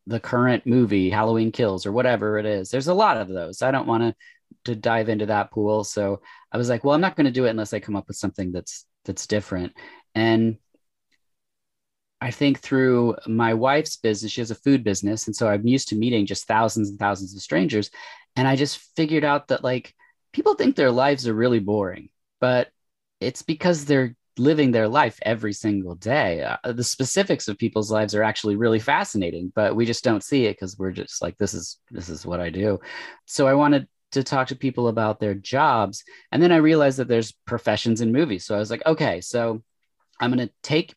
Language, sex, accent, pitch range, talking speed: English, male, American, 100-130 Hz, 215 wpm